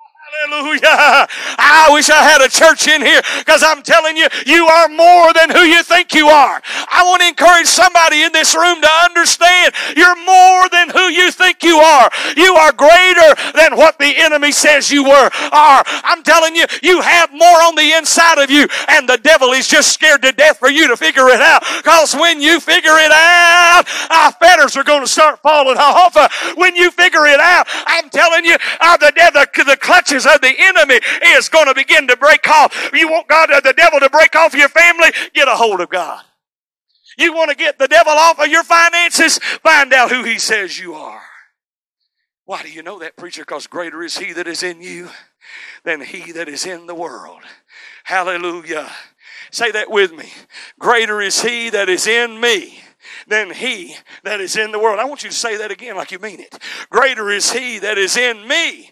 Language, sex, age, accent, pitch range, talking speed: English, male, 50-69, American, 250-335 Hz, 205 wpm